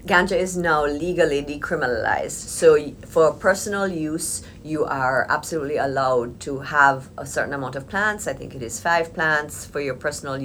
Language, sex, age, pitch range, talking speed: English, female, 50-69, 125-155 Hz, 165 wpm